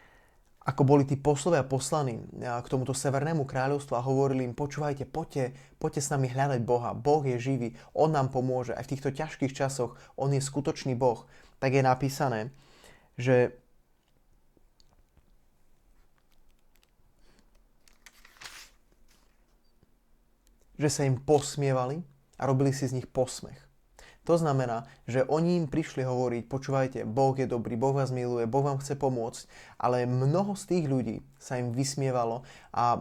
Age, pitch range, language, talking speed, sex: 20-39, 120-145 Hz, Slovak, 135 wpm, male